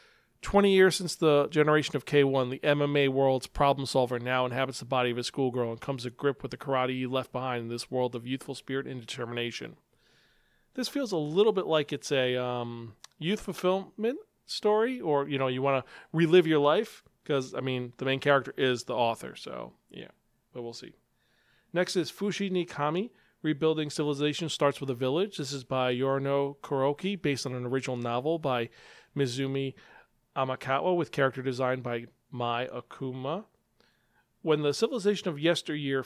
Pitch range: 130-165 Hz